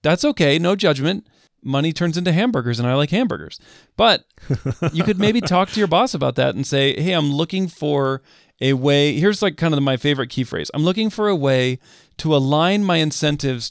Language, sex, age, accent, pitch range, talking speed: English, male, 40-59, American, 135-180 Hz, 205 wpm